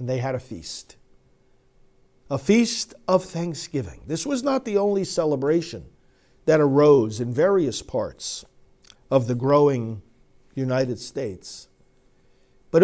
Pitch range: 130-175 Hz